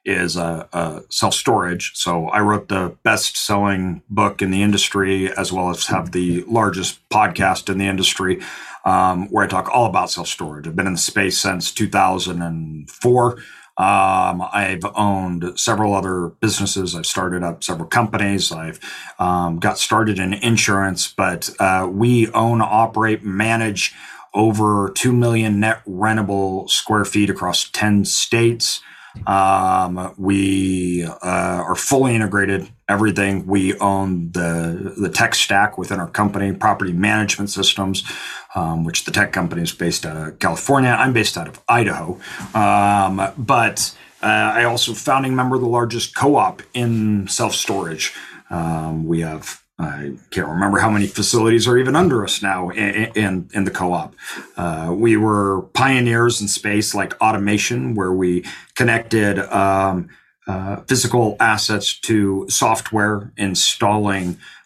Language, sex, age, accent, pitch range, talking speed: English, male, 40-59, American, 90-110 Hz, 145 wpm